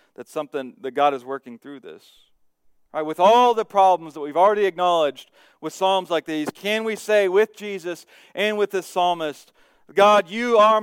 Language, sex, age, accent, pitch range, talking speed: English, male, 40-59, American, 120-185 Hz, 190 wpm